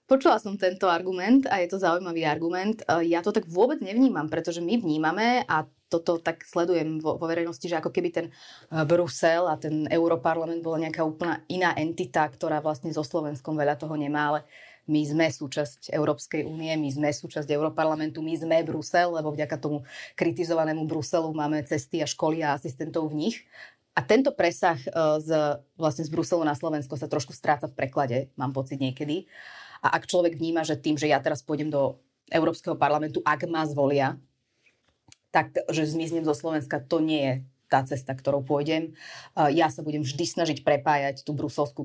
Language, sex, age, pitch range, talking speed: Slovak, female, 30-49, 150-165 Hz, 175 wpm